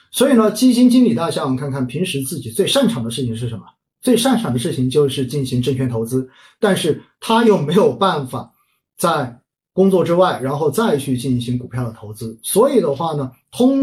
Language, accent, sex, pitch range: Chinese, native, male, 125-190 Hz